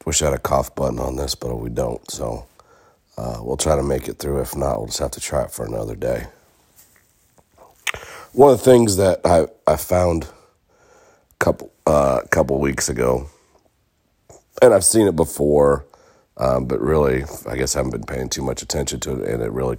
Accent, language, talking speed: American, English, 200 wpm